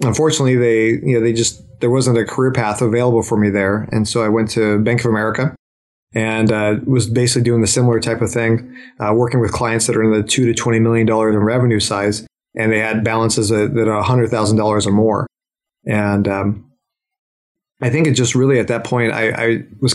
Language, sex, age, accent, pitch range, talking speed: English, male, 30-49, American, 110-125 Hz, 225 wpm